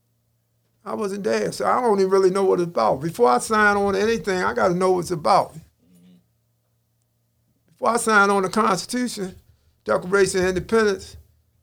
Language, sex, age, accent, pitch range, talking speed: English, male, 50-69, American, 115-195 Hz, 170 wpm